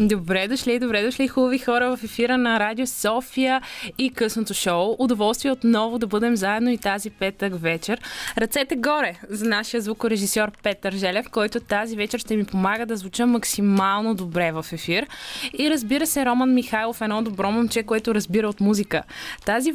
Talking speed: 170 wpm